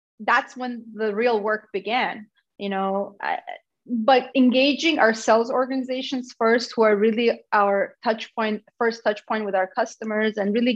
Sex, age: female, 30-49